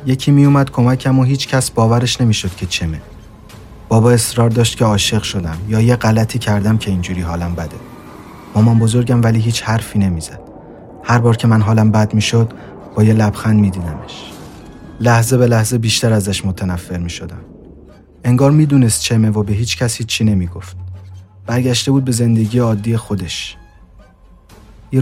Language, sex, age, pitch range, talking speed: Persian, male, 30-49, 95-120 Hz, 160 wpm